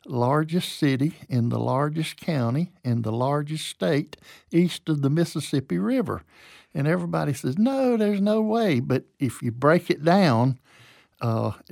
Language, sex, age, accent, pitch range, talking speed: English, male, 60-79, American, 115-155 Hz, 150 wpm